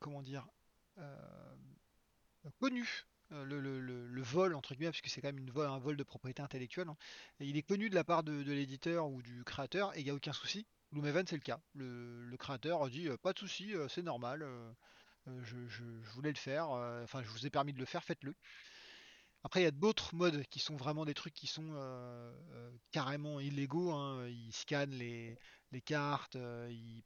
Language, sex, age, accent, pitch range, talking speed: French, male, 30-49, French, 130-170 Hz, 195 wpm